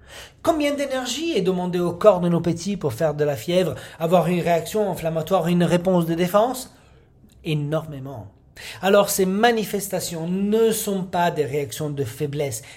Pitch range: 155-225 Hz